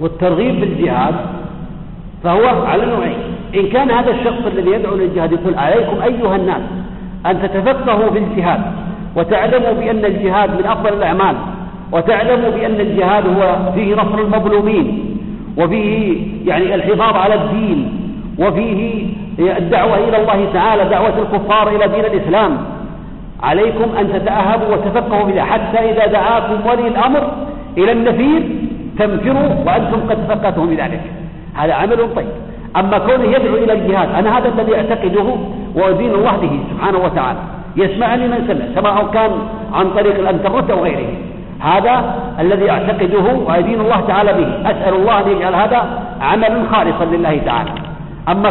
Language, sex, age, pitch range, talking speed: Arabic, male, 50-69, 190-225 Hz, 130 wpm